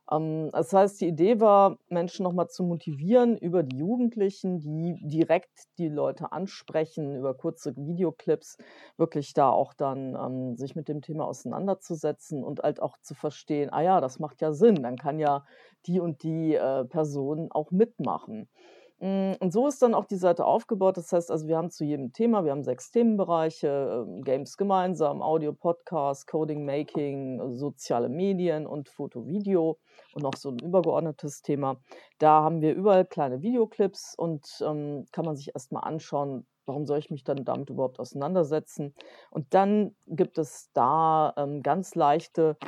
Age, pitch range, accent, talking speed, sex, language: 40-59, 145-180 Hz, German, 155 wpm, female, German